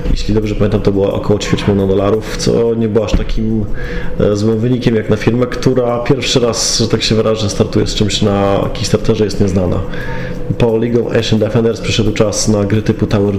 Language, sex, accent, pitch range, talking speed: Polish, male, native, 100-115 Hz, 195 wpm